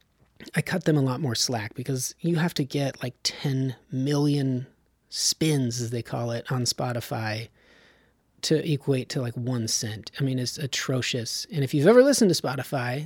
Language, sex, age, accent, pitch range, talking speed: English, male, 30-49, American, 125-180 Hz, 180 wpm